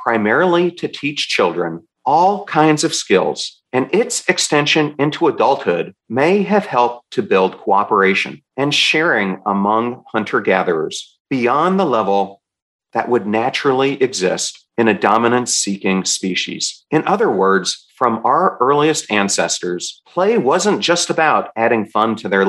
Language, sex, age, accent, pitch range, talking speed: English, male, 40-59, American, 95-150 Hz, 130 wpm